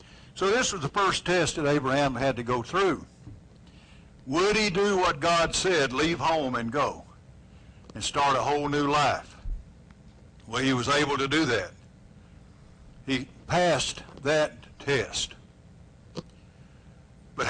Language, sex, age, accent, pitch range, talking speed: English, male, 60-79, American, 135-175 Hz, 135 wpm